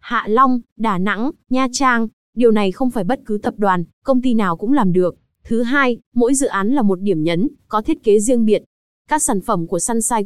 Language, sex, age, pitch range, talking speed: Vietnamese, female, 20-39, 205-255 Hz, 230 wpm